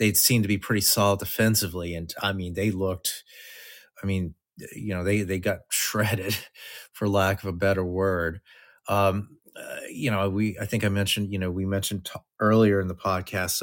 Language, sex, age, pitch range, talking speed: English, male, 30-49, 95-110 Hz, 195 wpm